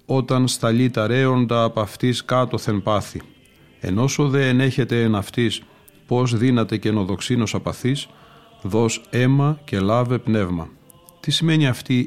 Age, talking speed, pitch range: 40-59, 135 wpm, 110-125 Hz